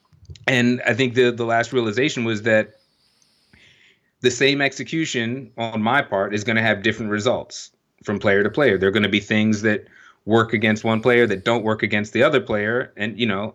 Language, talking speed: English, 205 wpm